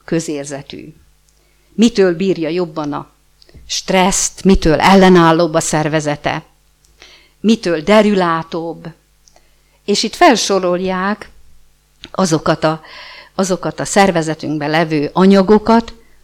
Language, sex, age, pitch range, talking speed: Hungarian, female, 50-69, 160-195 Hz, 80 wpm